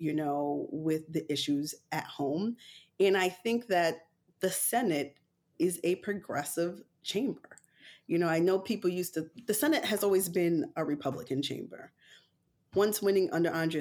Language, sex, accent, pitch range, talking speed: English, female, American, 165-210 Hz, 150 wpm